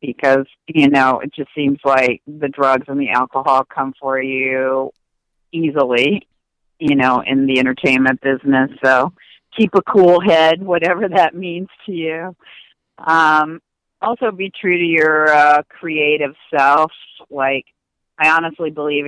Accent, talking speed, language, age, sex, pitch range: American, 140 wpm, English, 50-69, female, 130-160 Hz